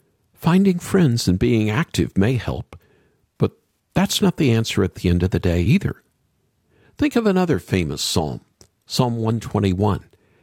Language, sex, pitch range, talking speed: English, male, 105-170 Hz, 150 wpm